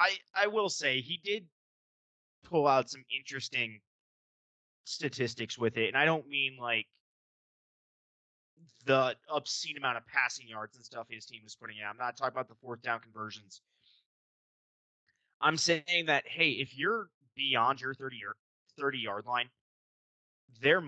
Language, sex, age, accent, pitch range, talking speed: English, male, 20-39, American, 115-150 Hz, 150 wpm